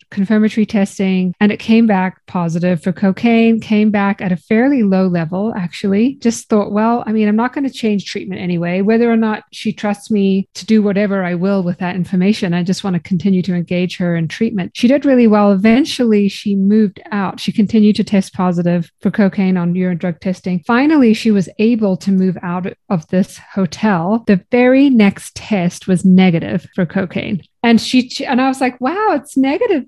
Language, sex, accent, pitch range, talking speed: English, female, American, 195-240 Hz, 200 wpm